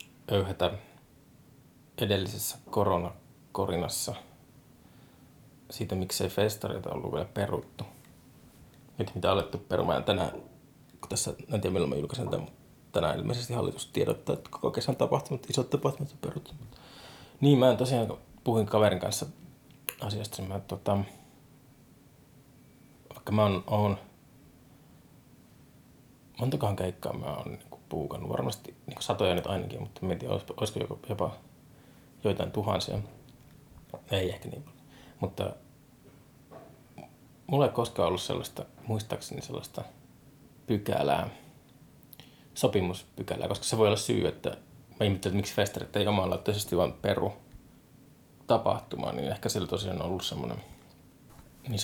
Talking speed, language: 120 wpm, Finnish